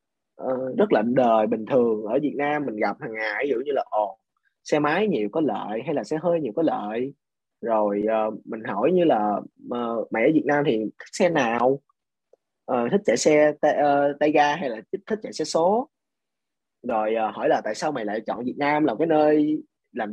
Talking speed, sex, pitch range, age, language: 215 wpm, male, 110-155 Hz, 20-39, Vietnamese